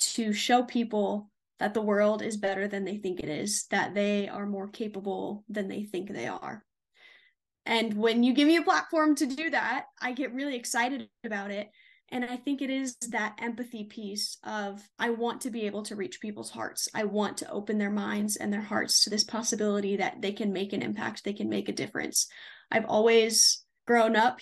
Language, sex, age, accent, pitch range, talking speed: English, female, 10-29, American, 205-245 Hz, 205 wpm